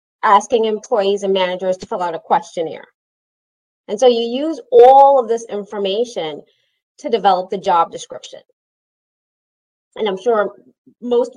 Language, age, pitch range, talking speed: English, 30-49, 195-255 Hz, 135 wpm